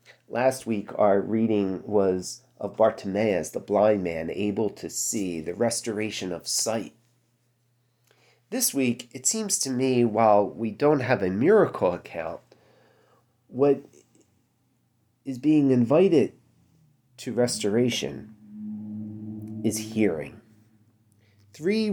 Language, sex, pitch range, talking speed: English, male, 110-130 Hz, 105 wpm